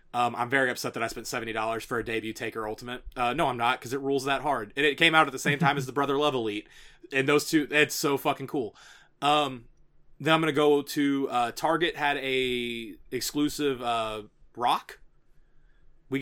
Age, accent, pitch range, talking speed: 20-39, American, 120-145 Hz, 210 wpm